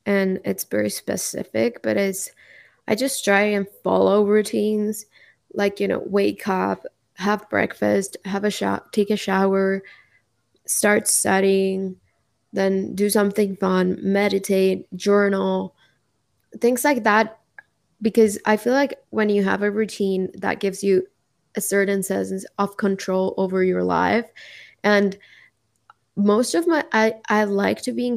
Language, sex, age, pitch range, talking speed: English, female, 20-39, 190-210 Hz, 140 wpm